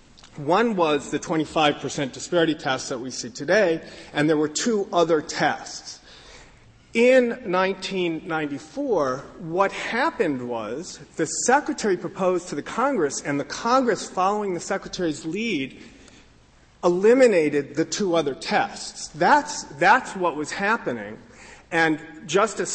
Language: English